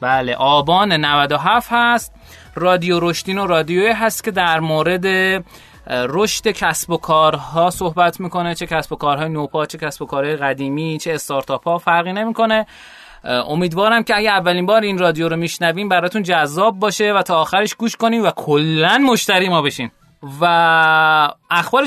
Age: 20-39